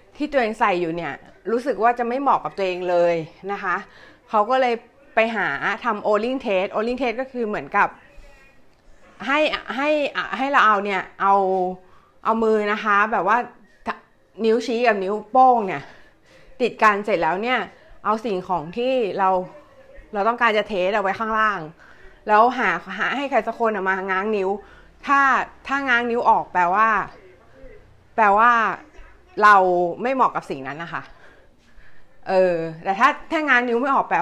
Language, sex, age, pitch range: Thai, female, 20-39, 195-255 Hz